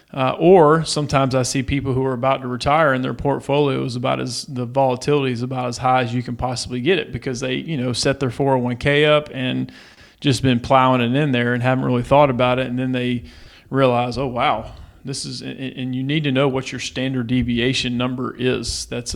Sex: male